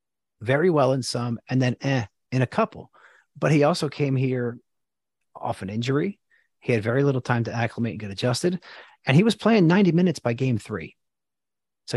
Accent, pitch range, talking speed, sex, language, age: American, 115-150 Hz, 190 wpm, male, English, 40-59